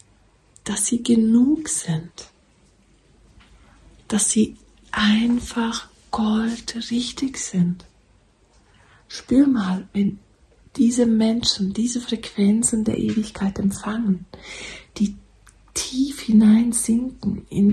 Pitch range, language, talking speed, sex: 190-225 Hz, German, 80 wpm, female